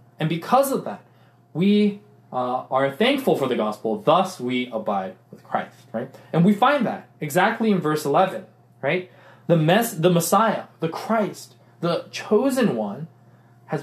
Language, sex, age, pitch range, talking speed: English, male, 20-39, 135-195 Hz, 155 wpm